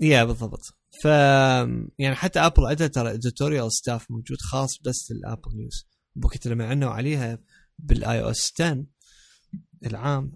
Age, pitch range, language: 20-39, 115-140 Hz, Arabic